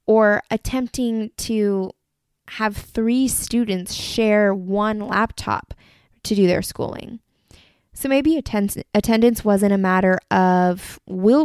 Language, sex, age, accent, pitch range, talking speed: English, female, 20-39, American, 190-225 Hz, 110 wpm